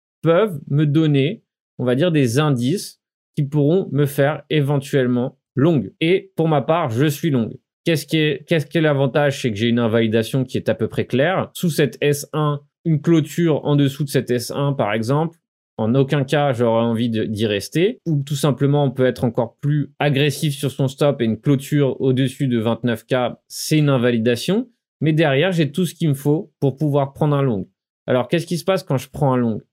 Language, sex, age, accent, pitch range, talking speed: French, male, 30-49, French, 125-155 Hz, 205 wpm